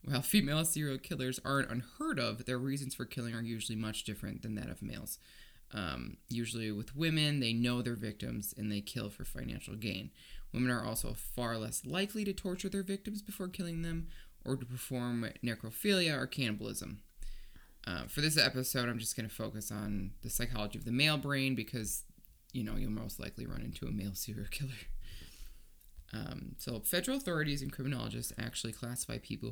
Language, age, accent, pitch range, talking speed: English, 20-39, American, 110-135 Hz, 180 wpm